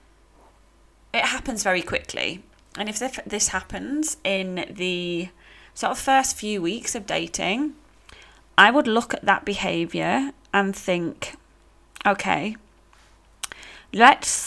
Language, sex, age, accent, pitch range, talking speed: English, female, 20-39, British, 185-230 Hz, 110 wpm